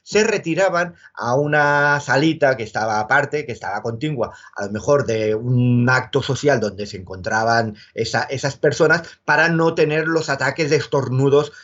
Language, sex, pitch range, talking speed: Spanish, male, 135-175 Hz, 160 wpm